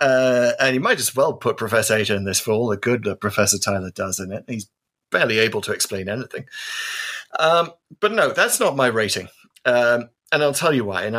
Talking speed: 220 wpm